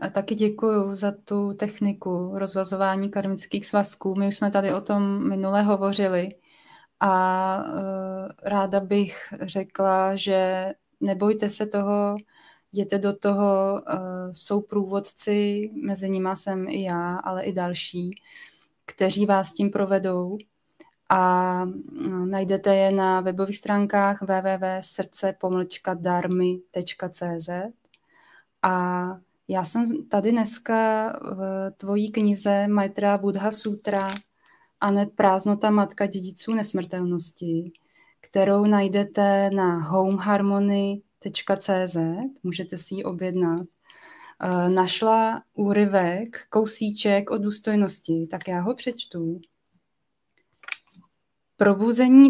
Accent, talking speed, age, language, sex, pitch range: native, 95 wpm, 20-39, Czech, female, 185-205 Hz